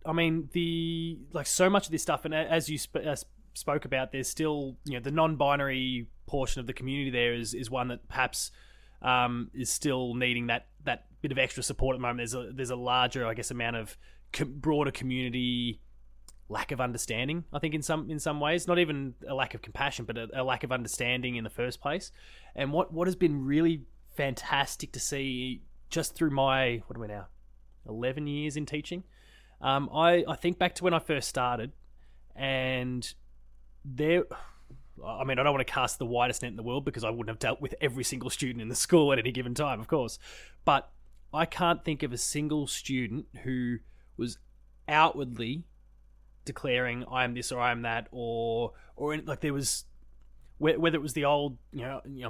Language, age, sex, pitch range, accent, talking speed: English, 20-39, male, 120-150 Hz, Australian, 205 wpm